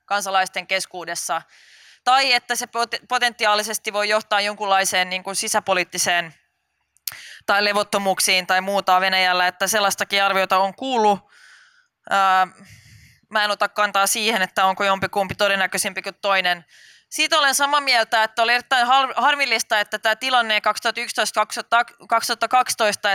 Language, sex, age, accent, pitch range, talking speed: Finnish, female, 20-39, native, 190-235 Hz, 115 wpm